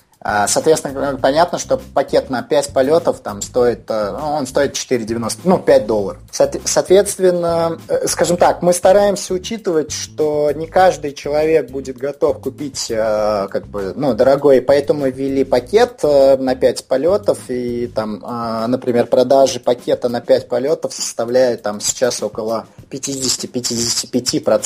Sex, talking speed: male, 125 wpm